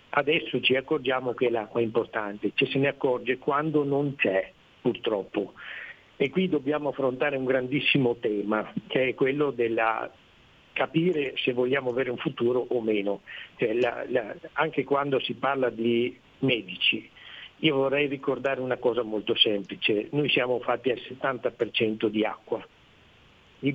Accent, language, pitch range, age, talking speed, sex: native, Italian, 115-140 Hz, 60-79, 150 wpm, male